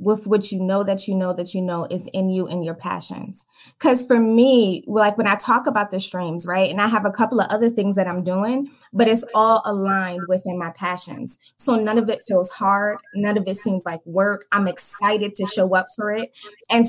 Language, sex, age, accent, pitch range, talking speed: English, female, 20-39, American, 190-235 Hz, 230 wpm